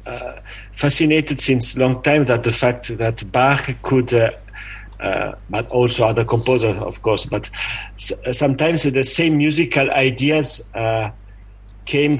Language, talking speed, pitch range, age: English, 140 wpm, 115-135 Hz, 40-59